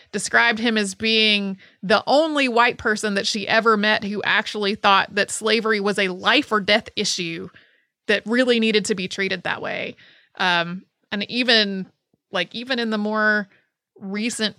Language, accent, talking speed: English, American, 165 wpm